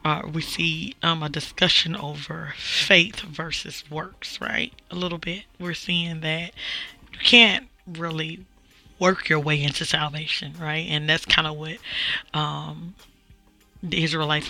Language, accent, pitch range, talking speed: English, American, 150-180 Hz, 140 wpm